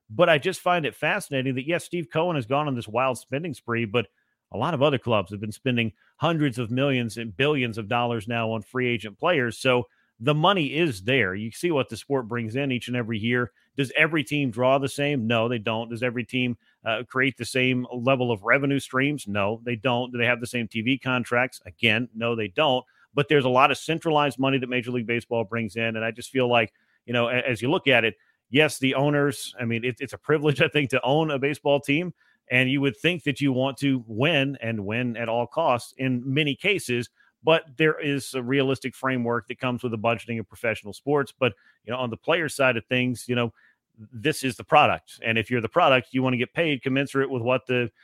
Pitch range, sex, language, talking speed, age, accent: 120-140 Hz, male, English, 235 wpm, 40-59, American